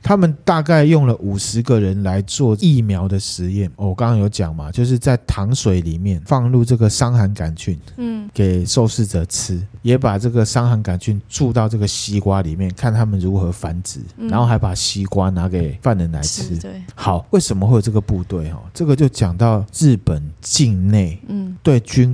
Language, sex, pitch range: Chinese, male, 95-125 Hz